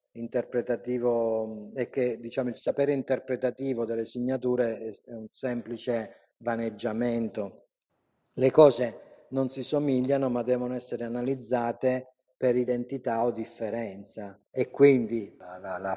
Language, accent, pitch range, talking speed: Italian, native, 115-135 Hz, 115 wpm